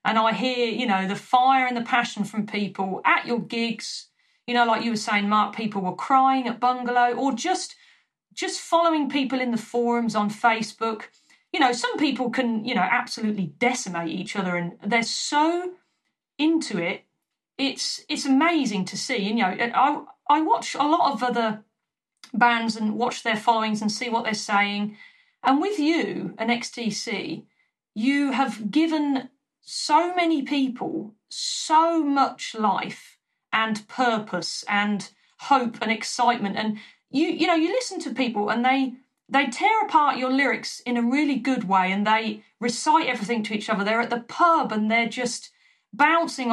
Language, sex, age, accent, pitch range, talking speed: English, female, 40-59, British, 220-300 Hz, 170 wpm